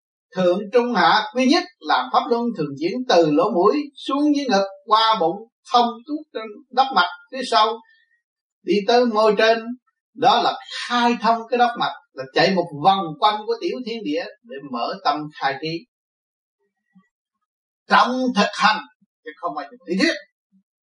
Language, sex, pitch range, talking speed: Vietnamese, male, 195-265 Hz, 165 wpm